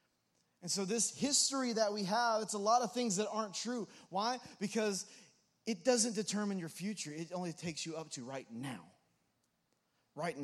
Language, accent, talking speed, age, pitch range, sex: English, American, 180 wpm, 20-39, 130-190 Hz, male